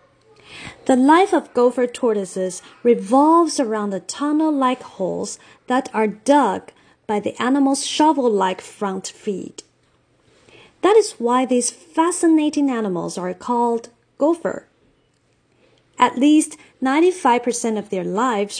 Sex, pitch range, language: female, 210-280 Hz, Chinese